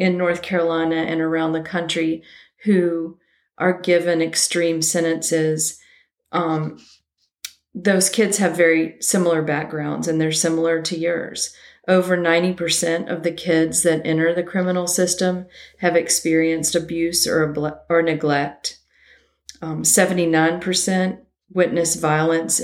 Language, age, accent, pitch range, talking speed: English, 40-59, American, 155-175 Hz, 115 wpm